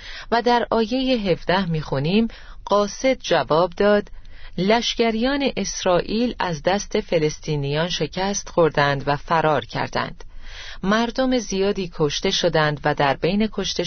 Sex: female